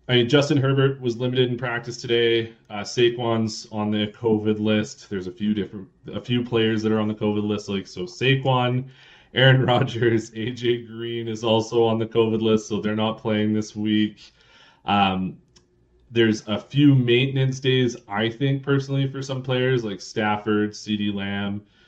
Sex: male